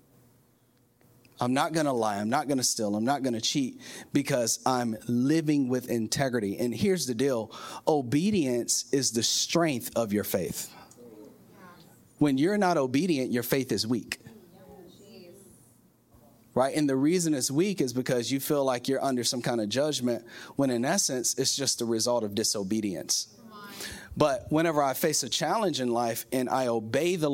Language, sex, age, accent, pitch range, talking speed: English, male, 30-49, American, 115-145 Hz, 170 wpm